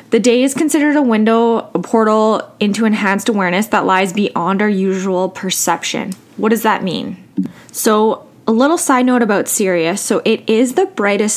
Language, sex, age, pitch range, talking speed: English, female, 20-39, 190-240 Hz, 175 wpm